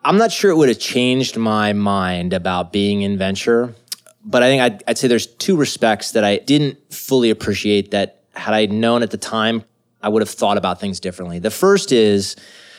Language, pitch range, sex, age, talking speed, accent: English, 105-130 Hz, male, 30-49, 205 wpm, American